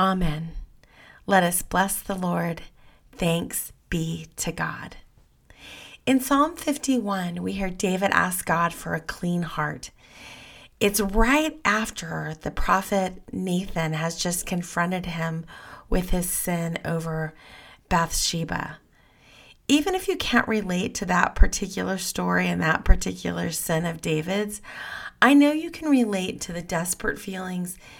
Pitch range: 170-225 Hz